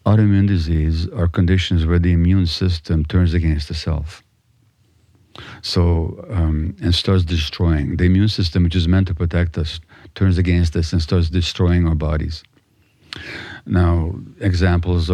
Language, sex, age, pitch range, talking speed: English, male, 50-69, 85-105 Hz, 145 wpm